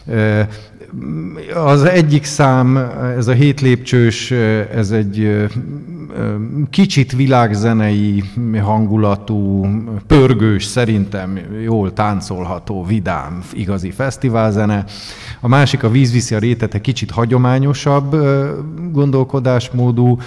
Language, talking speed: Hungarian, 80 wpm